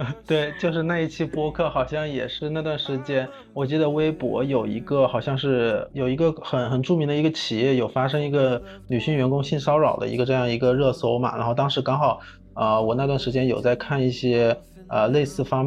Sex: male